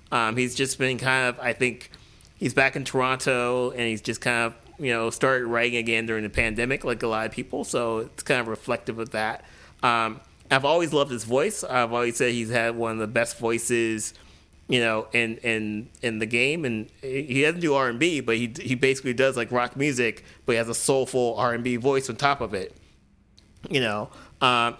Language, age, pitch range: English, 30-49, 110-130 Hz